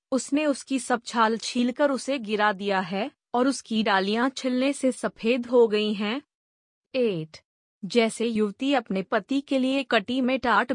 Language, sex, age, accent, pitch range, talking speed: Hindi, female, 20-39, native, 205-250 Hz, 155 wpm